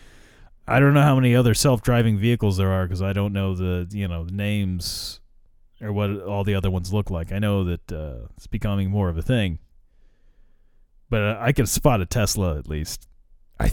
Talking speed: 205 wpm